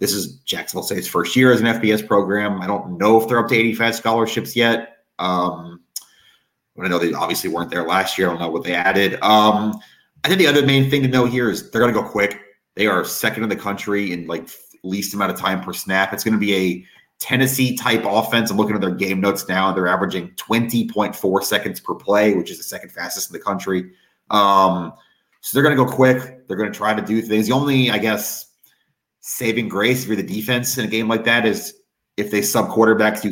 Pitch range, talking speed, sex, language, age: 95-115 Hz, 230 wpm, male, English, 30-49